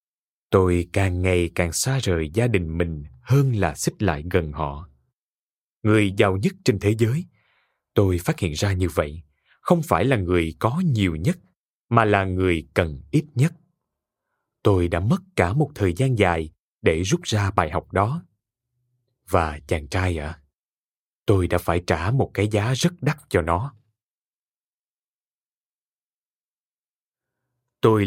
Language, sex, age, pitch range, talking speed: Vietnamese, male, 20-39, 90-130 Hz, 150 wpm